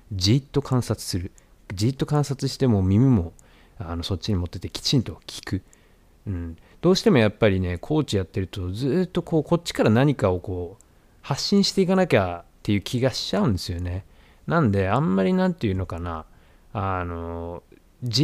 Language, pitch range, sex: Japanese, 90-135 Hz, male